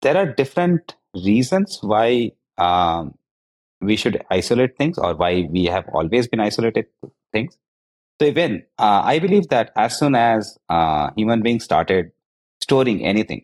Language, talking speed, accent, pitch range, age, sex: English, 145 wpm, Indian, 85-115 Hz, 30-49, male